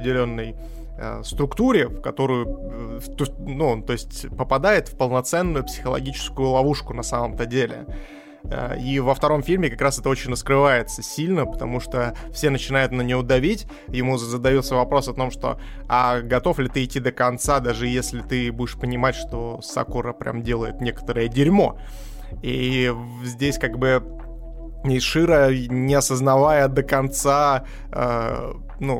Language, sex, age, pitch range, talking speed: Russian, male, 20-39, 120-140 Hz, 140 wpm